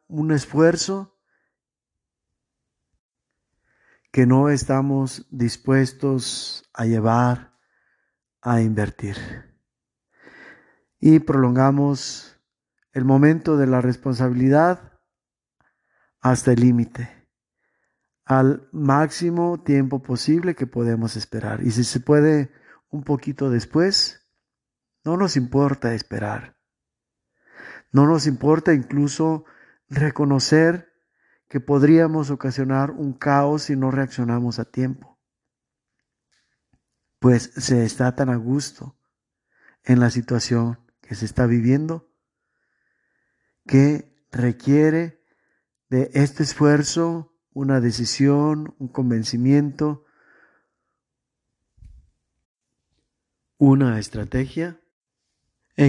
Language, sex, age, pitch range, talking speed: Spanish, male, 50-69, 120-150 Hz, 85 wpm